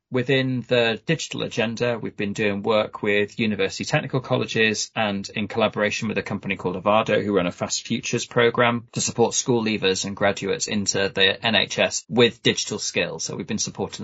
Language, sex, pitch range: English, male, 100-125 Hz